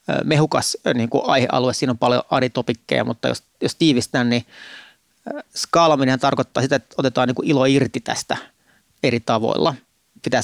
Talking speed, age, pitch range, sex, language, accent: 145 wpm, 30-49, 120-140 Hz, male, Finnish, native